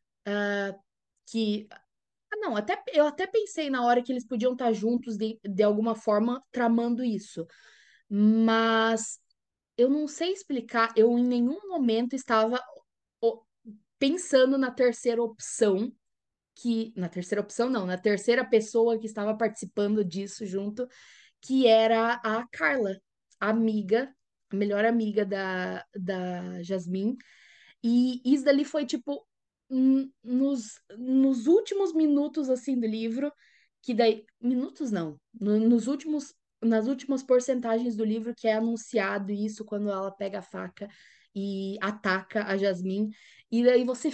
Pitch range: 210-255 Hz